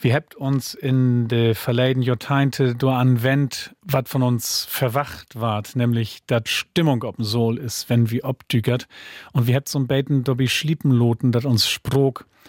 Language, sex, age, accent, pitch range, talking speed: German, male, 40-59, German, 115-135 Hz, 160 wpm